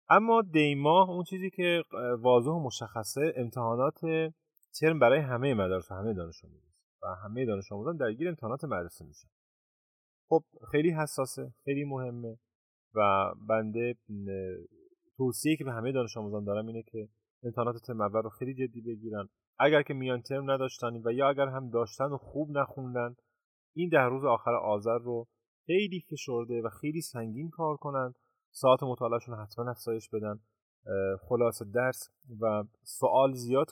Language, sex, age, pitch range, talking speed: Persian, male, 30-49, 110-145 Hz, 150 wpm